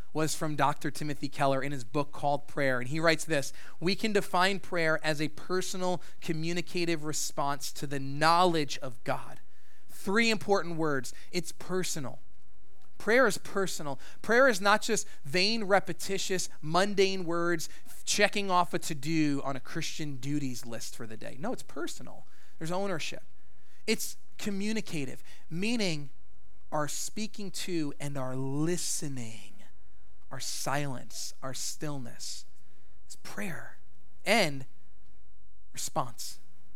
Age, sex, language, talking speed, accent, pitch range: 30-49, male, English, 125 wpm, American, 130-180 Hz